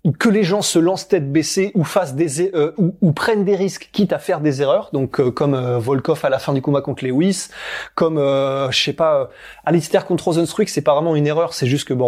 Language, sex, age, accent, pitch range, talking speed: French, male, 20-39, French, 145-190 Hz, 250 wpm